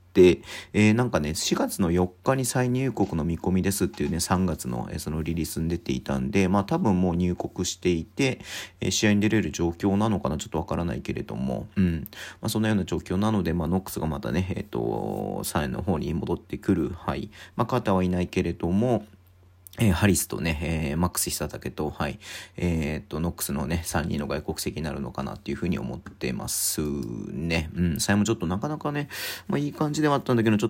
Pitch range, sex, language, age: 85-110 Hz, male, Japanese, 40-59